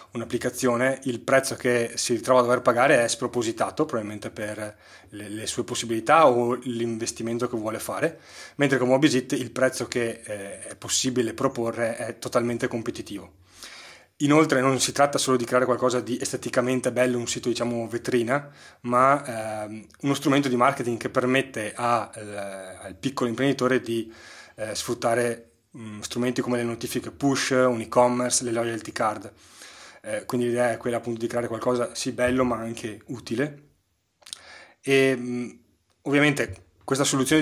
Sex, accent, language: male, native, Italian